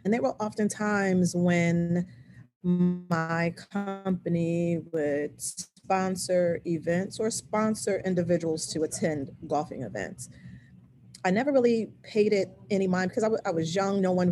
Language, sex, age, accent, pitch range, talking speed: English, female, 30-49, American, 160-195 Hz, 135 wpm